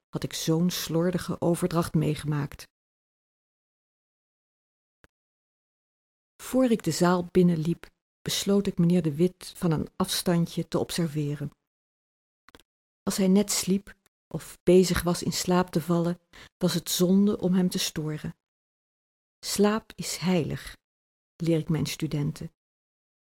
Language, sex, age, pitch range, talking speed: Dutch, female, 50-69, 165-190 Hz, 120 wpm